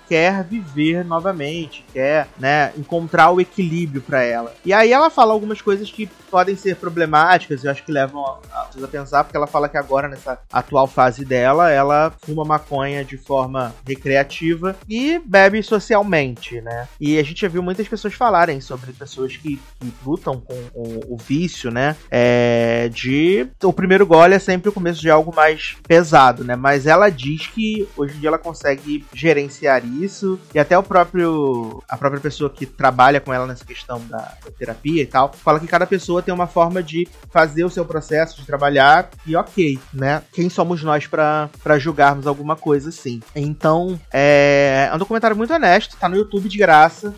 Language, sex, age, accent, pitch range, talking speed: Portuguese, male, 30-49, Brazilian, 130-170 Hz, 185 wpm